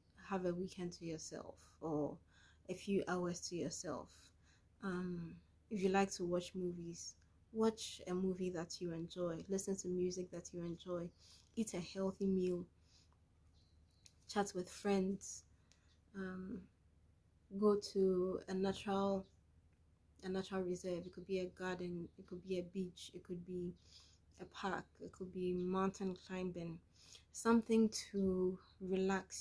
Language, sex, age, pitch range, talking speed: English, female, 20-39, 150-190 Hz, 140 wpm